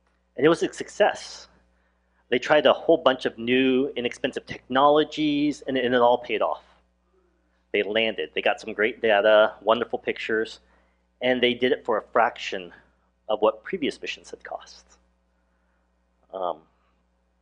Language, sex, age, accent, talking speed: English, male, 30-49, American, 150 wpm